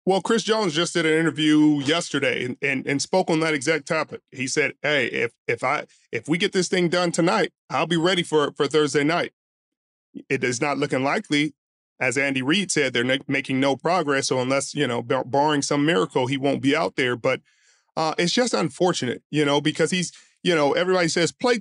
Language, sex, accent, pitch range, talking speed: English, male, American, 150-200 Hz, 210 wpm